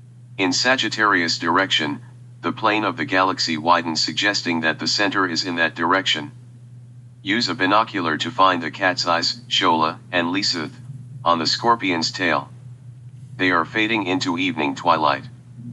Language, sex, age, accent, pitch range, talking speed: English, male, 40-59, American, 100-125 Hz, 145 wpm